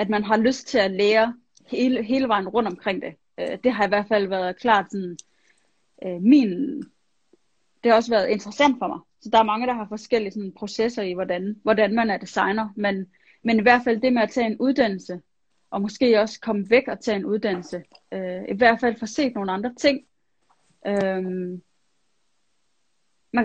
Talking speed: 180 wpm